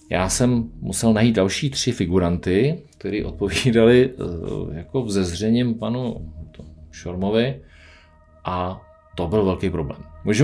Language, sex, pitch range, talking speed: Czech, male, 90-110 Hz, 110 wpm